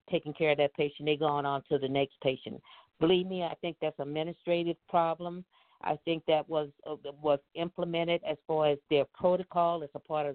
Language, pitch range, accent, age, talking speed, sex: English, 145-180 Hz, American, 50-69, 205 wpm, female